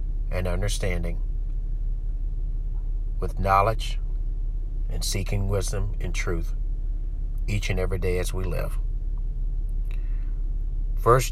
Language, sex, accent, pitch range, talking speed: English, male, American, 90-110 Hz, 90 wpm